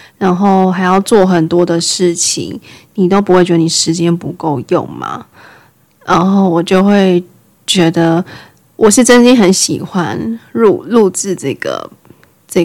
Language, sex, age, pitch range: Chinese, female, 20-39, 175-215 Hz